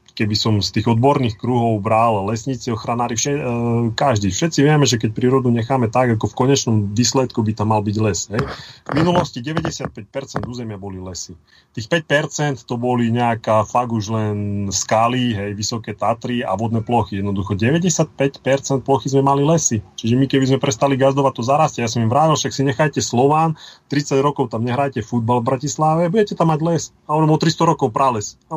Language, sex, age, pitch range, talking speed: Slovak, male, 30-49, 105-130 Hz, 185 wpm